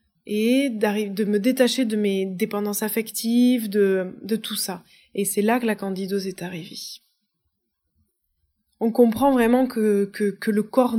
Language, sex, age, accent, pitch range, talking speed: French, female, 20-39, French, 205-240 Hz, 145 wpm